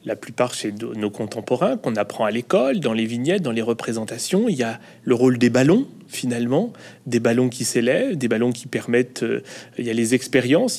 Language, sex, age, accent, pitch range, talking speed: French, male, 30-49, French, 120-160 Hz, 205 wpm